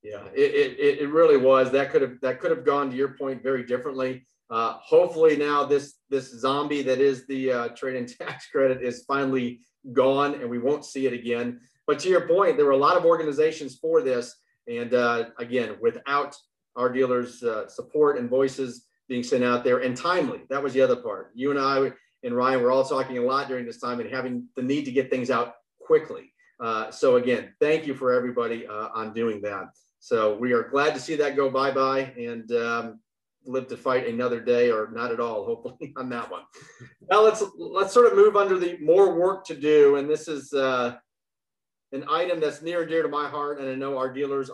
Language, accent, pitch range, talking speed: English, American, 125-160 Hz, 215 wpm